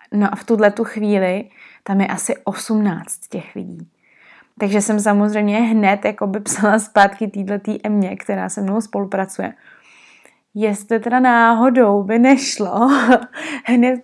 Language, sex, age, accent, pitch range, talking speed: Czech, female, 20-39, native, 200-230 Hz, 135 wpm